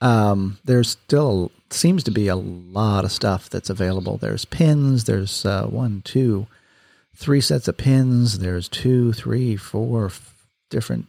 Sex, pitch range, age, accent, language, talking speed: male, 100-120 Hz, 40-59, American, English, 150 wpm